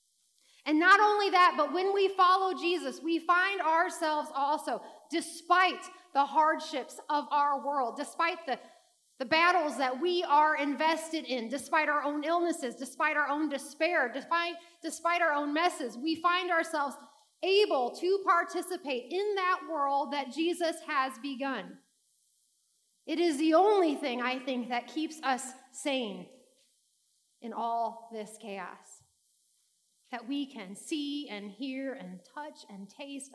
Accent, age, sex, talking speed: American, 30-49, female, 140 wpm